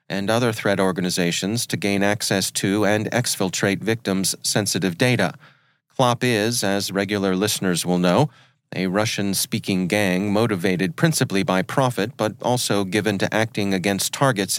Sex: male